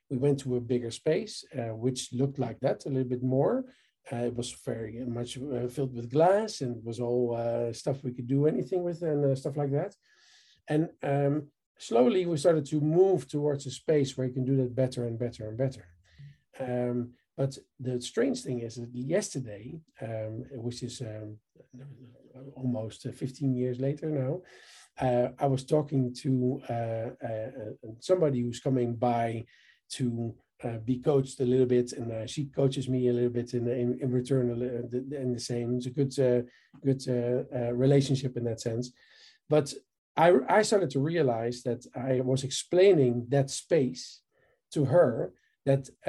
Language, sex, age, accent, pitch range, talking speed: English, male, 50-69, Dutch, 120-145 Hz, 175 wpm